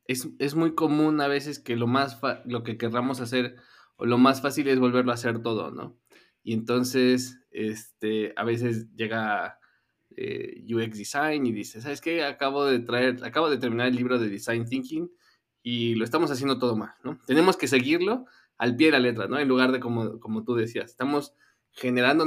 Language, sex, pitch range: Spanish, male, 115-140 Hz